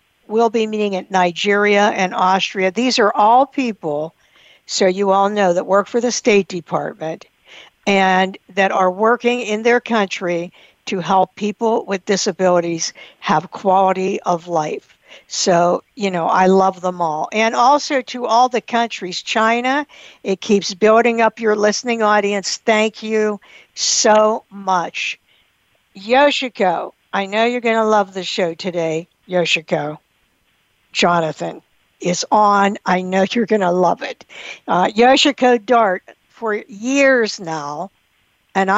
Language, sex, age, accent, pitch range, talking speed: English, female, 60-79, American, 180-225 Hz, 140 wpm